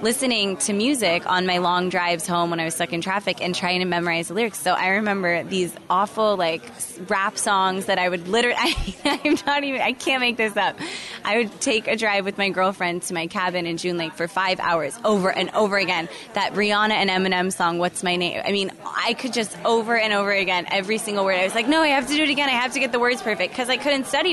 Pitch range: 175-220 Hz